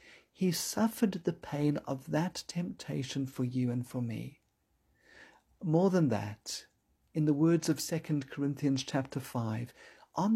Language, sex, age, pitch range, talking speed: English, male, 50-69, 125-165 Hz, 140 wpm